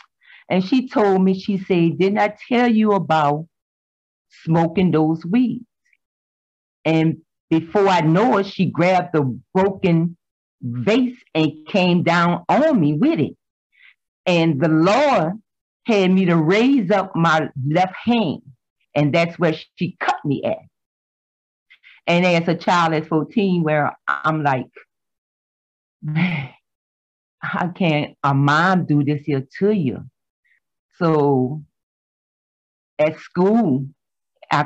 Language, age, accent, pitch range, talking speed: English, 40-59, American, 145-185 Hz, 125 wpm